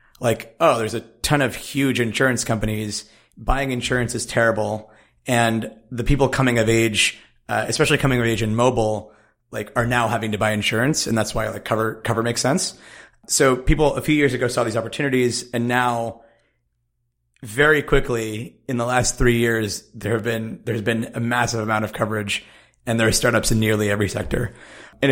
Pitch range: 110-125 Hz